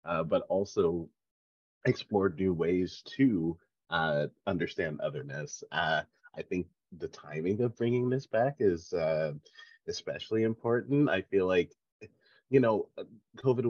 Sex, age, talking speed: male, 30-49, 125 wpm